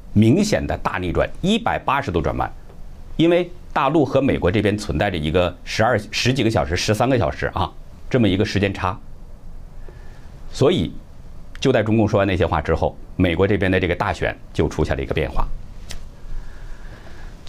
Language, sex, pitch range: Chinese, male, 80-115 Hz